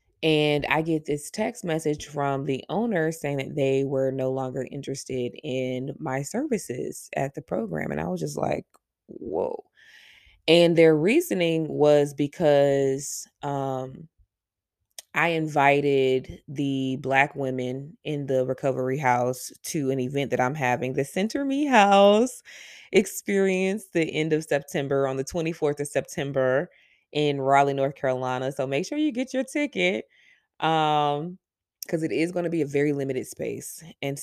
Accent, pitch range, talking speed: American, 130-165 Hz, 150 wpm